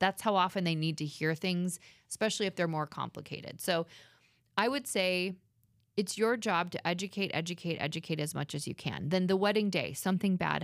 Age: 20-39